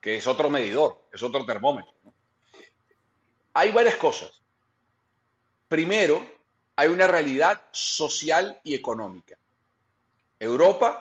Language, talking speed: Spanish, 100 wpm